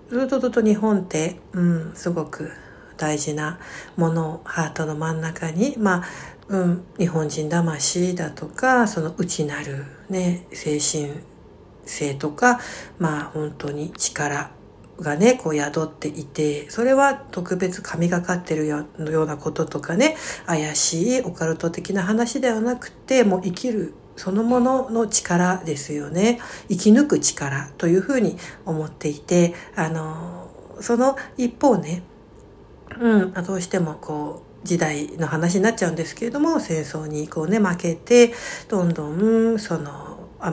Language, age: Japanese, 60-79